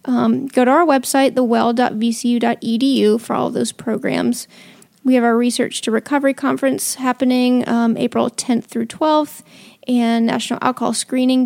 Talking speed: 145 wpm